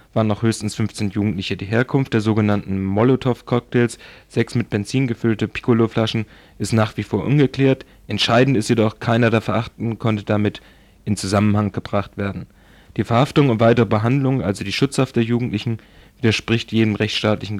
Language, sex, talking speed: German, male, 155 wpm